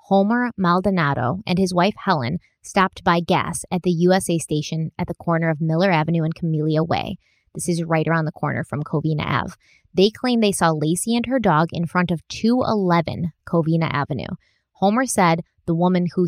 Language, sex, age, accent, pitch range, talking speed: English, female, 20-39, American, 160-195 Hz, 185 wpm